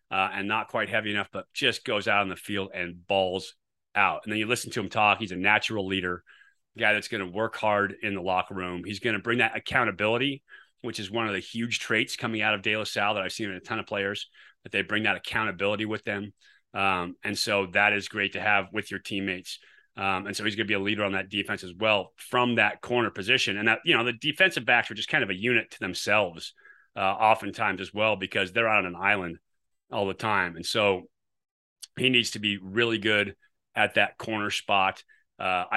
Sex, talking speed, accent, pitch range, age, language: male, 235 wpm, American, 100-120 Hz, 30-49, English